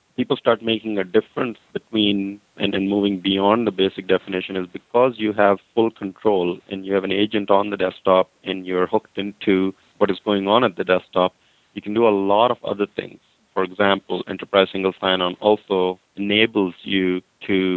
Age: 30-49